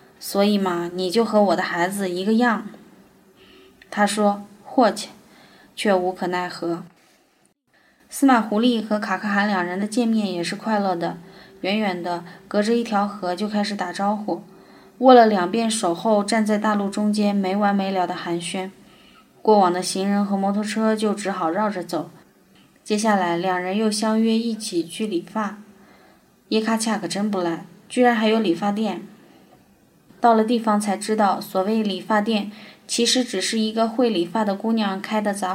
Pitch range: 190-220 Hz